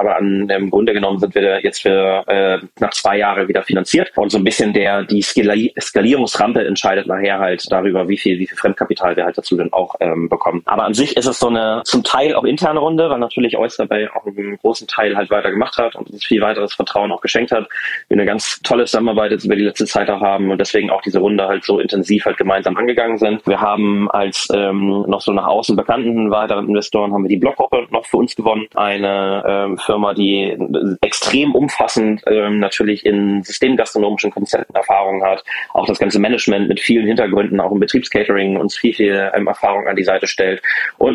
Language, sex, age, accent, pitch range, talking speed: German, male, 20-39, German, 100-110 Hz, 215 wpm